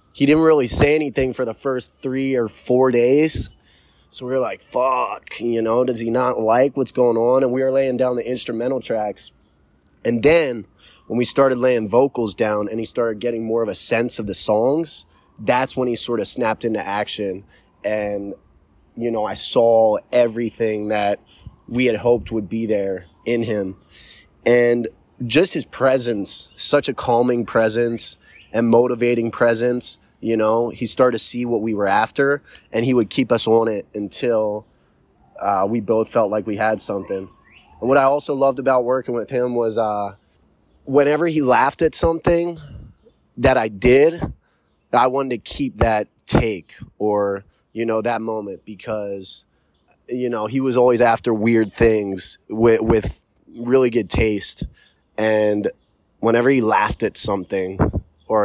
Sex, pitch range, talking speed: male, 100-120 Hz, 170 wpm